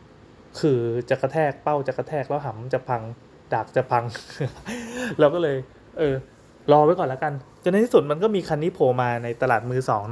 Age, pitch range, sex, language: 20-39, 125-145 Hz, male, Thai